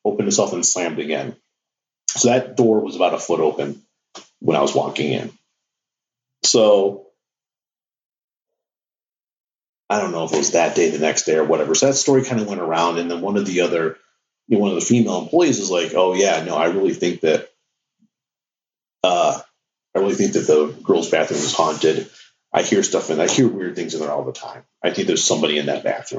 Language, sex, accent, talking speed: English, male, American, 210 wpm